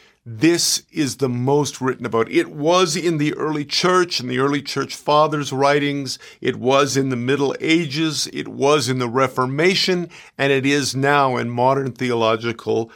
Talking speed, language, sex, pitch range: 165 wpm, English, male, 130-160 Hz